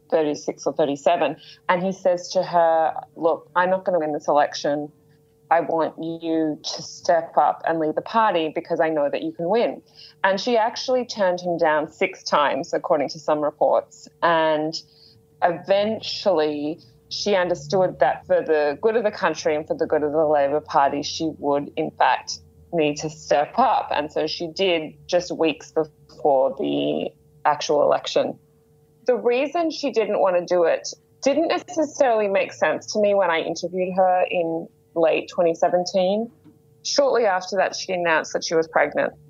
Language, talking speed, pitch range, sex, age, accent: English, 170 wpm, 155-190 Hz, female, 20-39, Australian